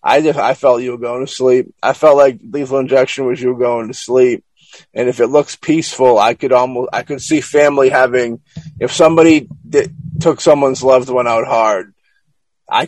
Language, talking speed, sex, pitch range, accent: English, 200 wpm, male, 115-145 Hz, American